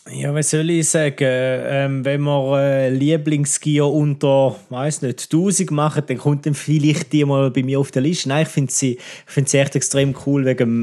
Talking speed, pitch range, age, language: 200 wpm, 125-150 Hz, 20-39, German